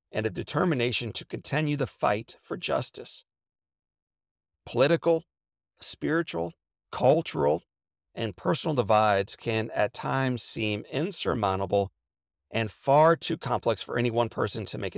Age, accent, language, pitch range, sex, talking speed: 40-59, American, English, 100-140 Hz, male, 120 wpm